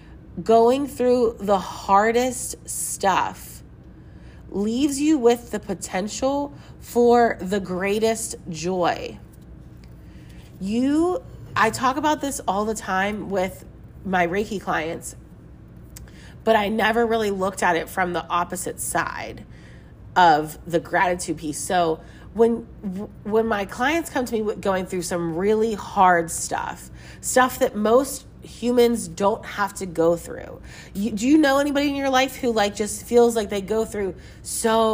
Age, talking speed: 30-49, 140 wpm